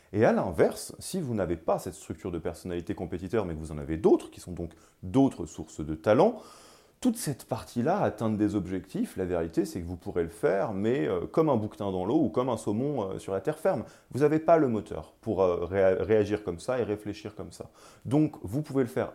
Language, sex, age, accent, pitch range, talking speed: French, male, 30-49, French, 95-115 Hz, 225 wpm